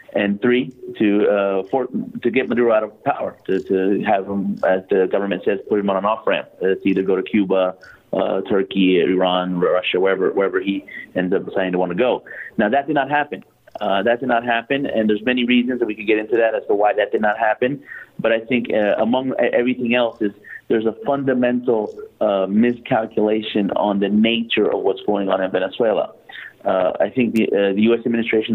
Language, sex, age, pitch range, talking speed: English, male, 30-49, 100-125 Hz, 210 wpm